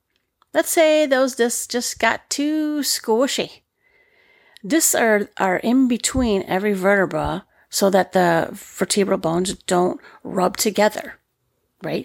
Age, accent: 40-59, American